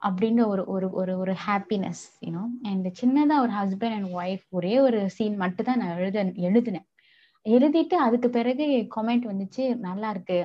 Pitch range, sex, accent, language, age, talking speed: 185-235 Hz, female, native, Tamil, 20-39, 125 wpm